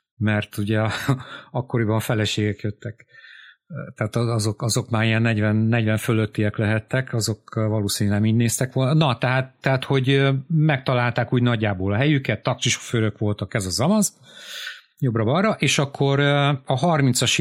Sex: male